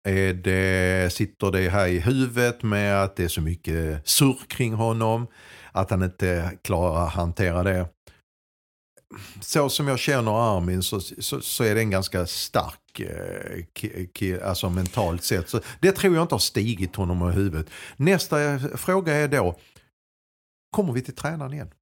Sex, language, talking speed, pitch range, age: male, Swedish, 165 wpm, 85-115 Hz, 50-69